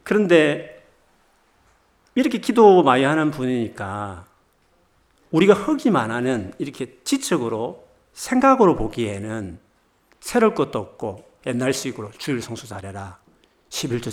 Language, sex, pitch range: Korean, male, 110-185 Hz